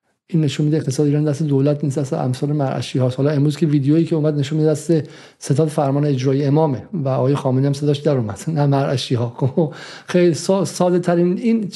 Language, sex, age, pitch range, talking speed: Persian, male, 50-69, 155-205 Hz, 195 wpm